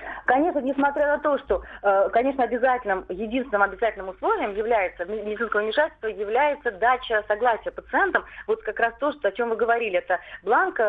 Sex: female